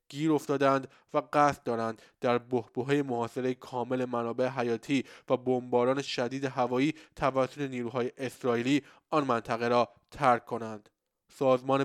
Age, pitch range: 20-39, 125-145 Hz